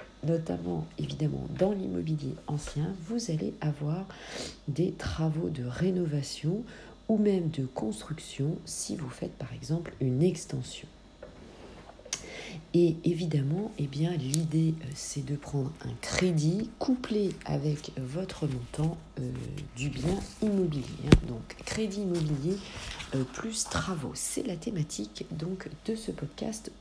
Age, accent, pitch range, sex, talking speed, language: 40-59, French, 145-205 Hz, female, 120 wpm, French